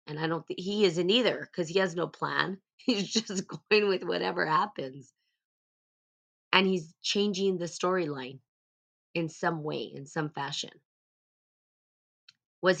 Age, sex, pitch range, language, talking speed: 20-39, female, 150-180 Hz, English, 140 wpm